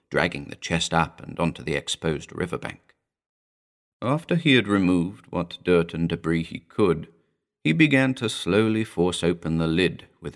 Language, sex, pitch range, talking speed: English, male, 85-125 Hz, 160 wpm